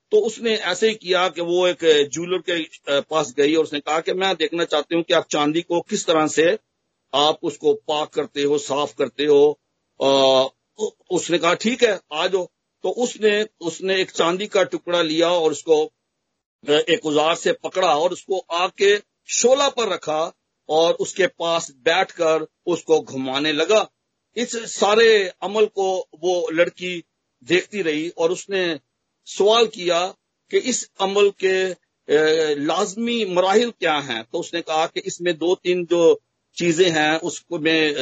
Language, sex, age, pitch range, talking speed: Hindi, male, 50-69, 155-205 Hz, 155 wpm